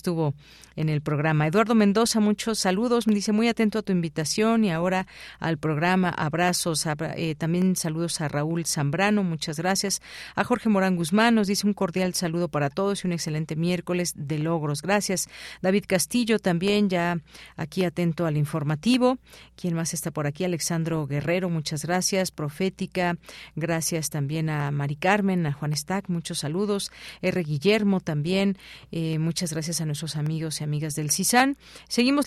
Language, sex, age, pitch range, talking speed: Spanish, female, 40-59, 160-195 Hz, 165 wpm